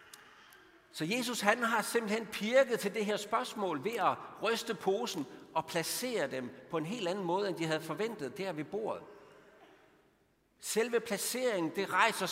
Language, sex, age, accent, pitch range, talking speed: Danish, male, 60-79, native, 150-230 Hz, 160 wpm